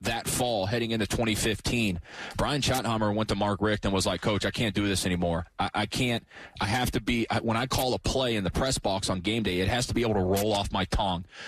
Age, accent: 30-49, American